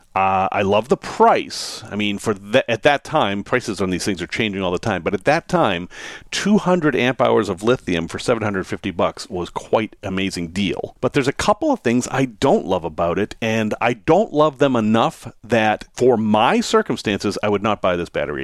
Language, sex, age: English, male, 40-59